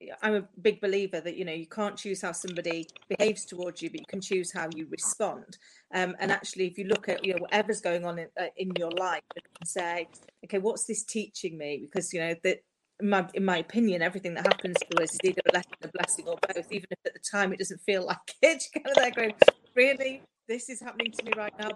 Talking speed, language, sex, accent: 250 wpm, English, female, British